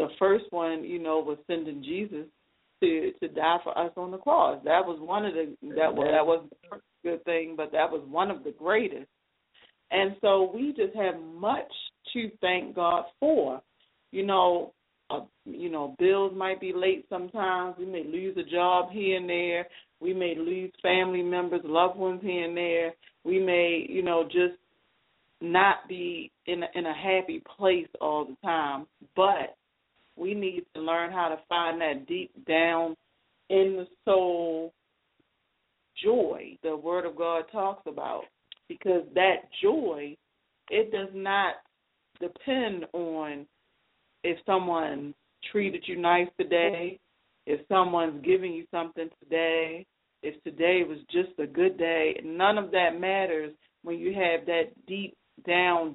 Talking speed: 160 wpm